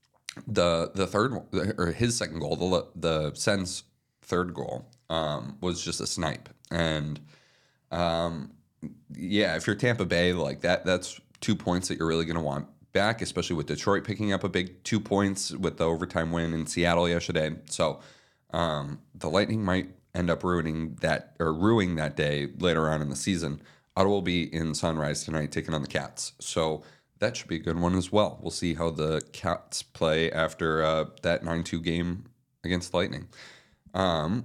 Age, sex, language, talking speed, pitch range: 30-49, male, English, 180 wpm, 80-95 Hz